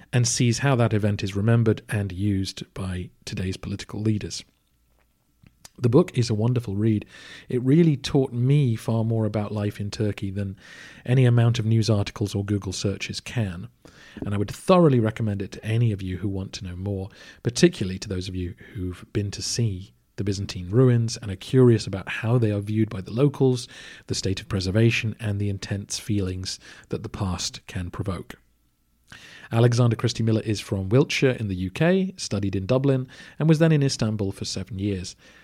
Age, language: 40-59, English